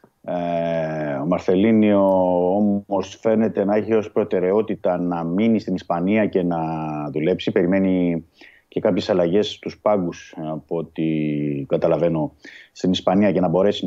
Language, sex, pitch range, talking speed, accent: Greek, male, 85-110 Hz, 130 wpm, native